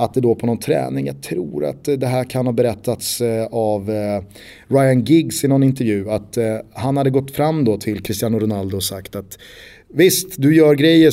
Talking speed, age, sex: 195 wpm, 30-49, male